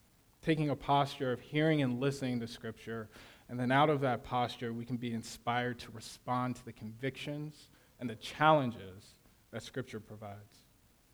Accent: American